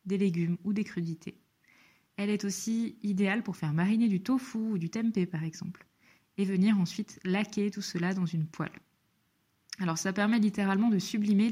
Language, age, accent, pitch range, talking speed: French, 20-39, French, 175-215 Hz, 175 wpm